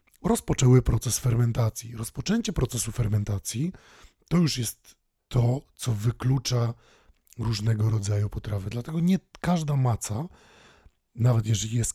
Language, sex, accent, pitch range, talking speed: Polish, male, native, 110-135 Hz, 110 wpm